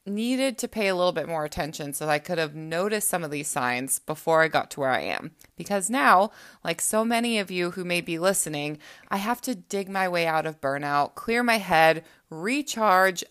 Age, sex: 20-39, female